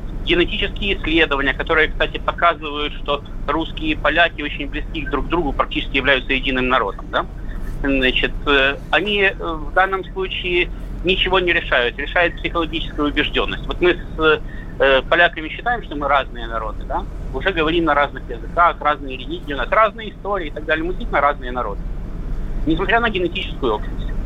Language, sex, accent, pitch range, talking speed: Russian, male, native, 150-190 Hz, 155 wpm